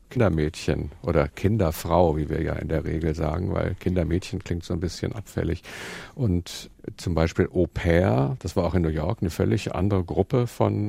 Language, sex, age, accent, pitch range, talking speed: German, male, 50-69, German, 85-105 Hz, 175 wpm